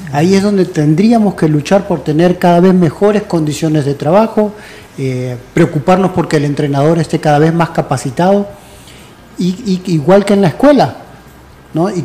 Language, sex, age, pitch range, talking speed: Spanish, male, 40-59, 140-185 Hz, 150 wpm